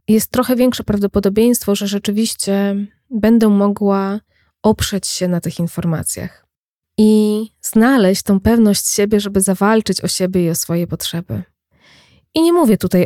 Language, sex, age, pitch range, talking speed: Polish, female, 20-39, 180-210 Hz, 140 wpm